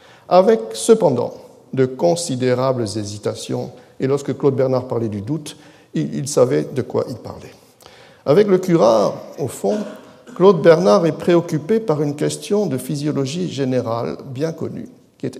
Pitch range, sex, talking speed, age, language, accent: 125-185 Hz, male, 150 wpm, 60-79, French, French